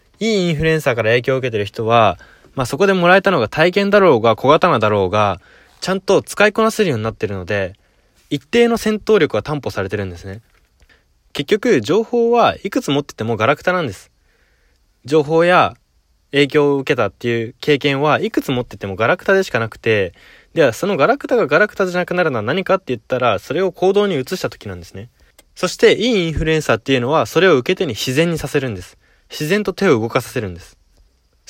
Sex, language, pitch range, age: male, Japanese, 110-165 Hz, 20-39